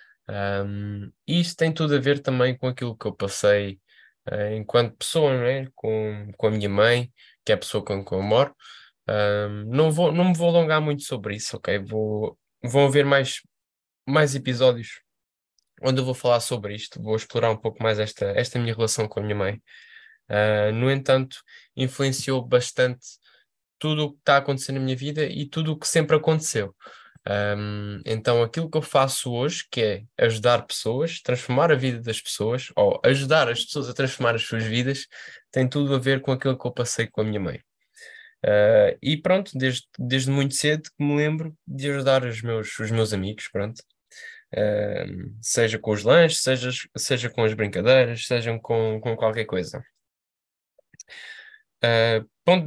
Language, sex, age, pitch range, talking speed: Portuguese, male, 10-29, 110-145 Hz, 180 wpm